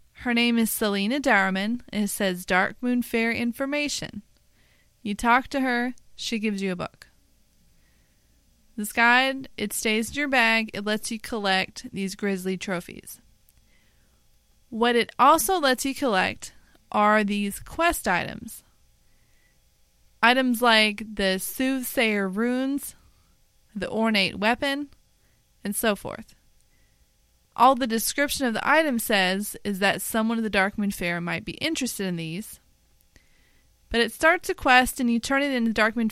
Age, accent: 20-39, American